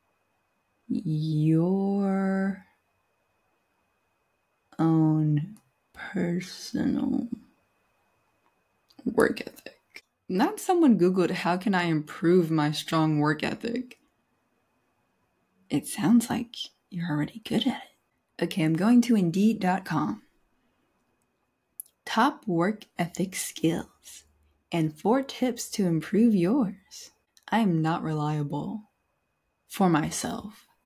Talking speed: 90 wpm